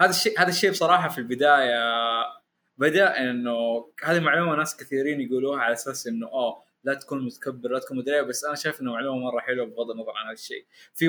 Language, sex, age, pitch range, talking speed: Arabic, male, 20-39, 120-160 Hz, 200 wpm